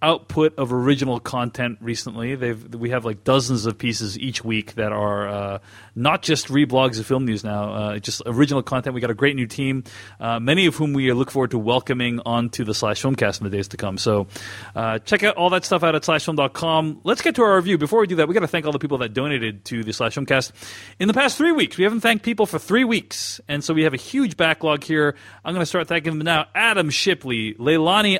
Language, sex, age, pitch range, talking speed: English, male, 30-49, 115-165 Hz, 245 wpm